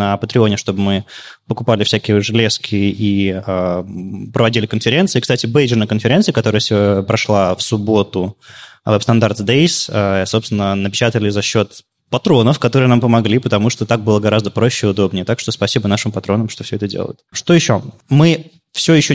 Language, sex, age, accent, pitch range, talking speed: Russian, male, 20-39, native, 105-130 Hz, 165 wpm